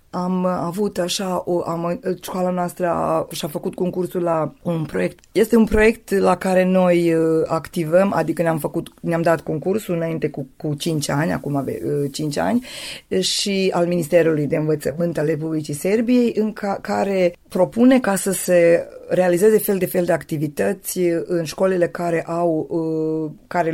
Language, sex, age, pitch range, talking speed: Romanian, female, 20-39, 150-185 Hz, 160 wpm